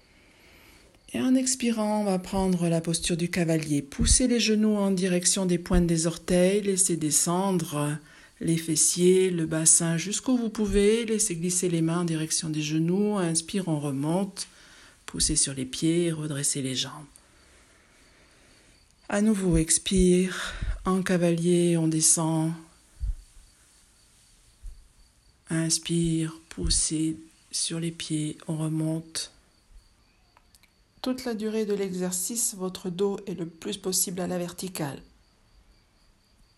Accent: French